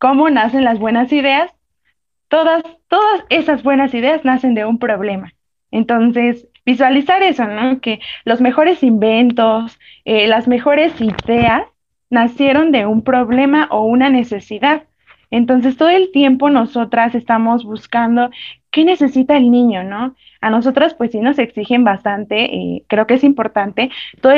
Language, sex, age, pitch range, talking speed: Spanish, female, 20-39, 230-280 Hz, 145 wpm